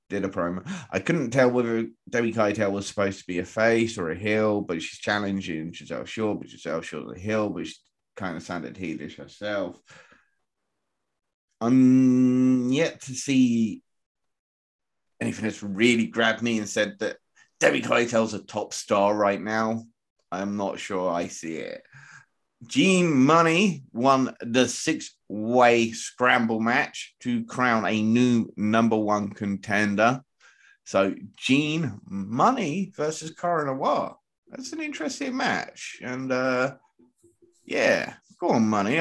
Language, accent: English, British